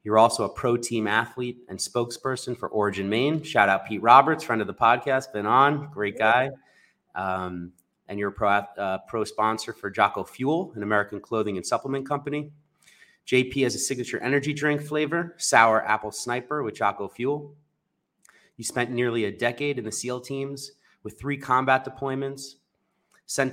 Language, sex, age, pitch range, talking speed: English, male, 30-49, 105-130 Hz, 170 wpm